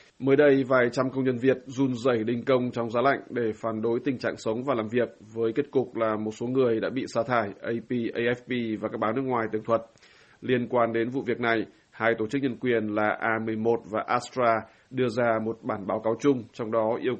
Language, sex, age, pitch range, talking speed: Vietnamese, male, 20-39, 110-125 Hz, 235 wpm